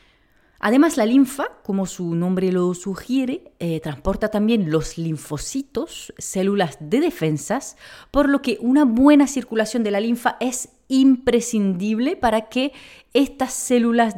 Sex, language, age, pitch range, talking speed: female, Spanish, 30-49, 180-250 Hz, 130 wpm